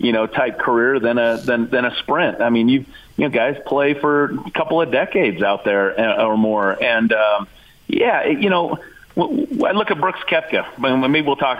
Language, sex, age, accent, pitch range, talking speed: English, male, 40-59, American, 115-155 Hz, 220 wpm